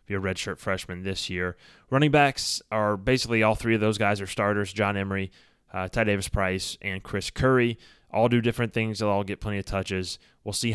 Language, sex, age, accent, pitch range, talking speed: English, male, 20-39, American, 100-120 Hz, 205 wpm